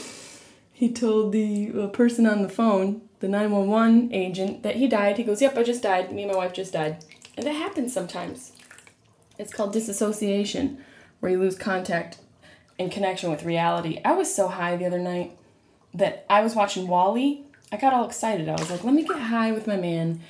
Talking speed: 195 wpm